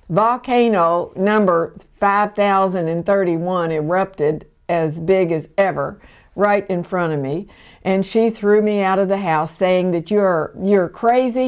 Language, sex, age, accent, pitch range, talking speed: English, female, 60-79, American, 170-215 Hz, 135 wpm